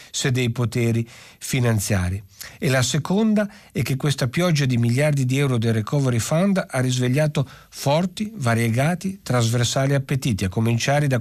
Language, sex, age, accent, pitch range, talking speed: Italian, male, 50-69, native, 115-150 Hz, 145 wpm